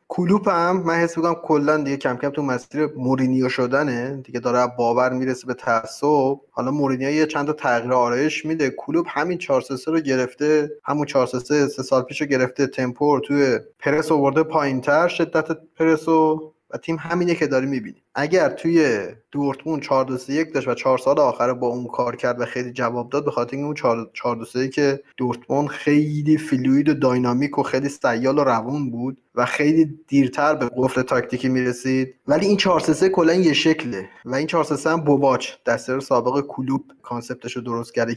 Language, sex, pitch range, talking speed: Persian, male, 125-150 Hz, 165 wpm